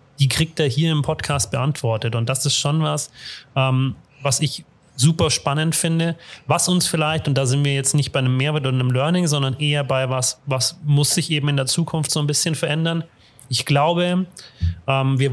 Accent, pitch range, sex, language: German, 130-155 Hz, male, German